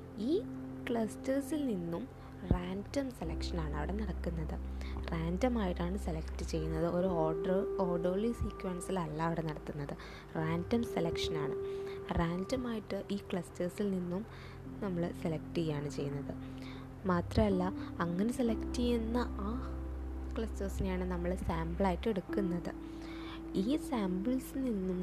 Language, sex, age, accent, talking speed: English, female, 20-39, Indian, 100 wpm